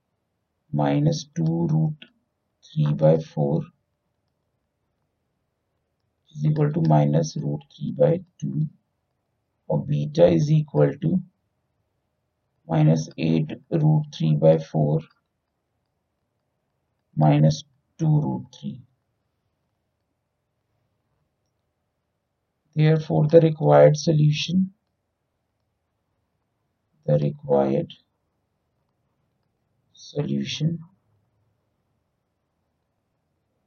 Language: Hindi